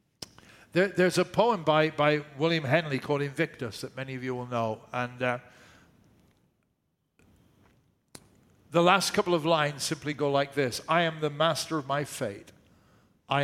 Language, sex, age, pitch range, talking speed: English, male, 50-69, 140-180 Hz, 150 wpm